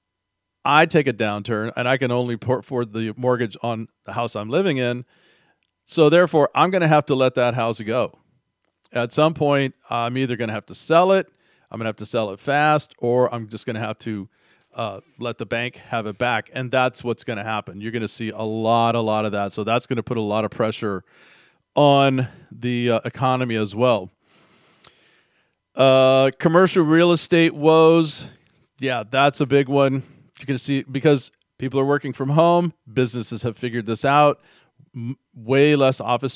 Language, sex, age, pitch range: English, male, 40-59, 115-145 Hz